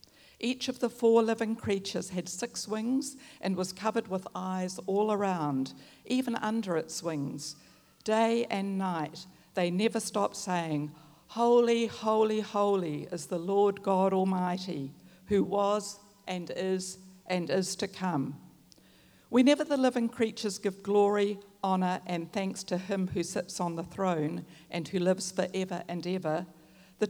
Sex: female